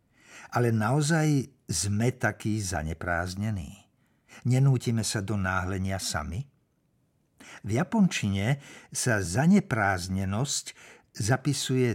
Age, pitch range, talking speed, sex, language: 60-79, 100-140 Hz, 75 wpm, male, Slovak